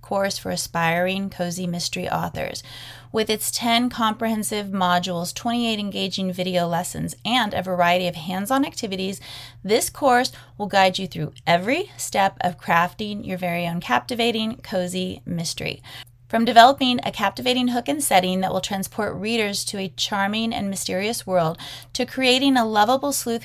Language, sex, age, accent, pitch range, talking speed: English, female, 30-49, American, 180-235 Hz, 150 wpm